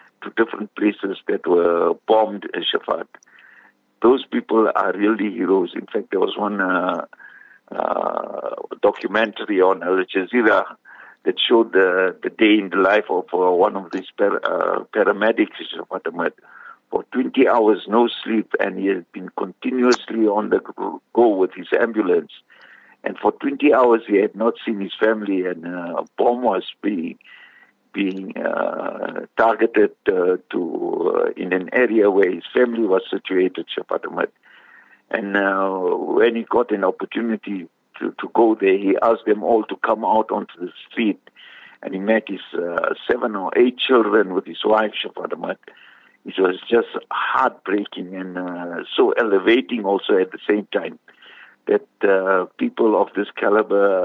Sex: male